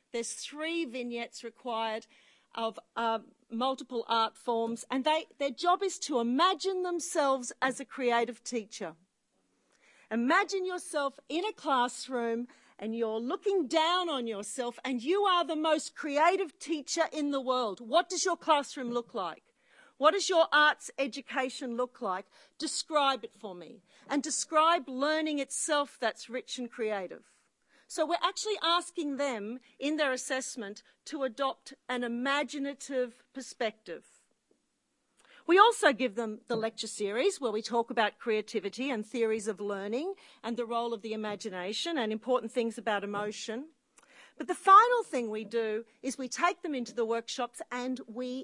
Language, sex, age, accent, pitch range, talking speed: English, female, 40-59, Australian, 230-305 Hz, 150 wpm